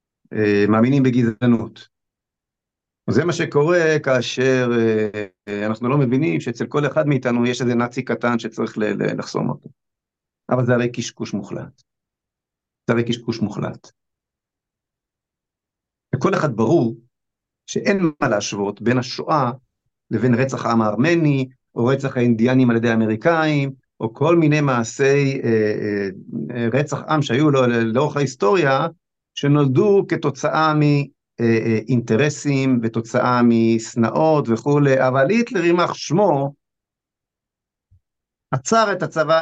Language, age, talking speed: Hebrew, 50-69, 115 wpm